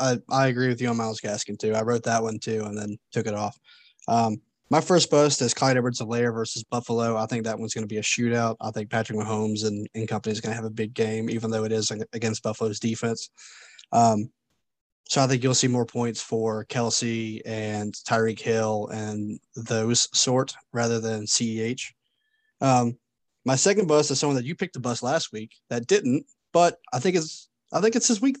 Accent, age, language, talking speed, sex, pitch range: American, 20-39, English, 210 wpm, male, 110-130 Hz